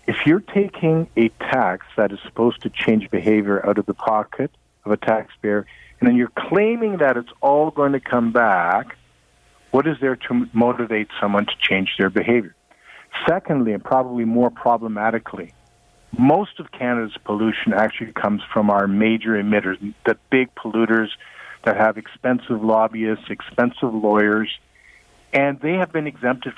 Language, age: English, 50-69